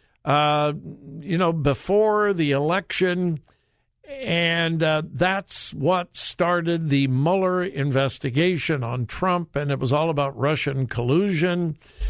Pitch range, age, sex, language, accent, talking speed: 135-180 Hz, 60-79, male, English, American, 115 wpm